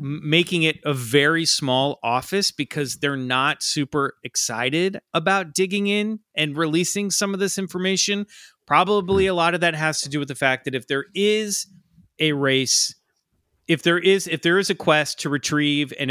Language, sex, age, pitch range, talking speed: English, male, 30-49, 130-175 Hz, 180 wpm